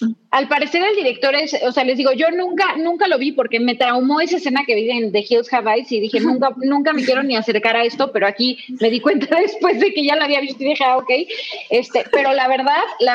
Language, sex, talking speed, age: Spanish, female, 260 wpm, 20-39